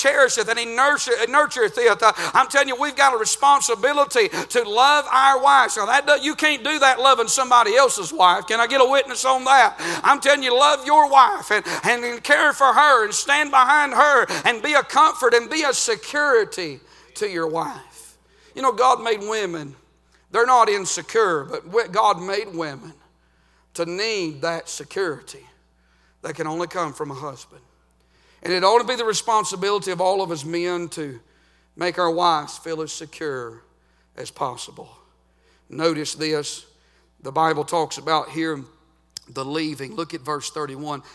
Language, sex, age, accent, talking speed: English, male, 50-69, American, 170 wpm